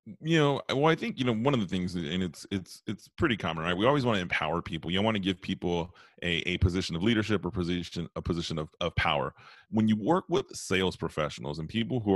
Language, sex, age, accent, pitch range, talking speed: English, male, 30-49, American, 85-110 Hz, 250 wpm